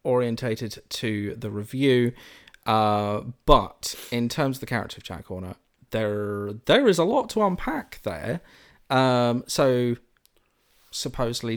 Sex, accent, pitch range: male, British, 100-120 Hz